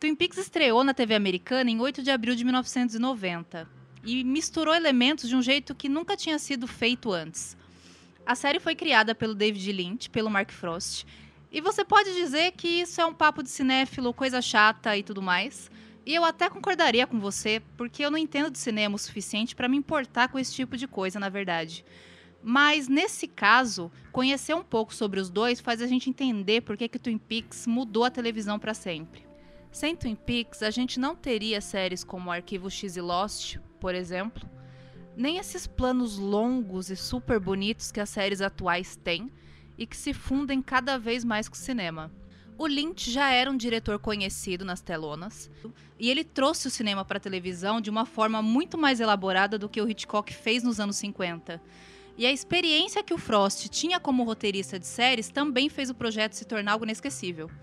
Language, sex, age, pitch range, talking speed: Portuguese, female, 20-39, 195-265 Hz, 190 wpm